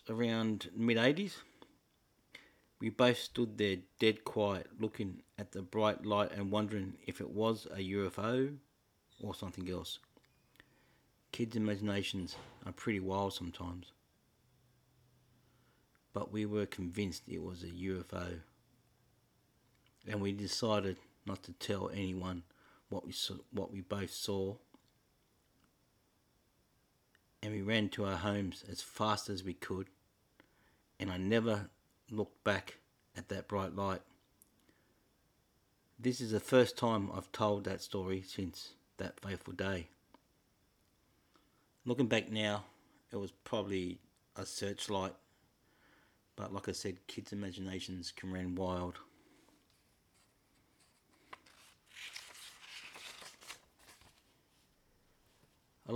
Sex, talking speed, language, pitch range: male, 110 wpm, English, 95-110 Hz